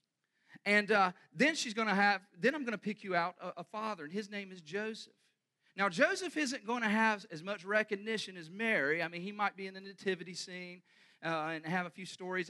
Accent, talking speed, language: American, 230 wpm, English